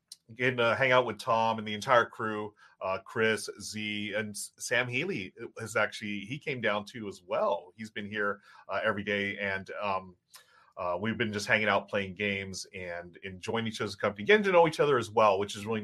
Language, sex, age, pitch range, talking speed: English, male, 30-49, 105-145 Hz, 210 wpm